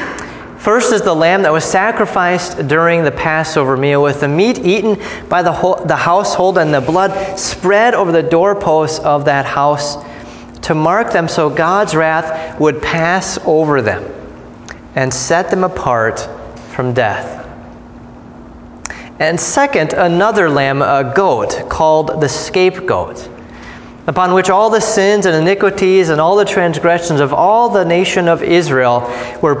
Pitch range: 140-190 Hz